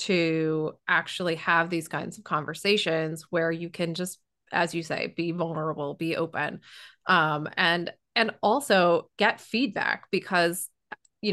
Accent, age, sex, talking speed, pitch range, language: American, 20-39, female, 140 wpm, 165-205 Hz, English